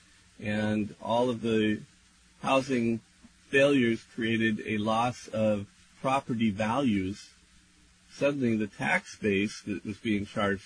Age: 40-59